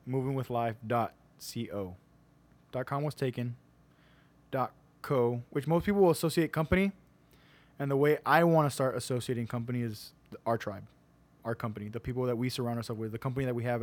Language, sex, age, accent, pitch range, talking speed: English, male, 20-39, American, 110-135 Hz, 155 wpm